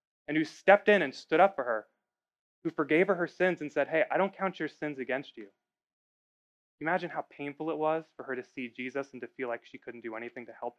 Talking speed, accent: 245 wpm, American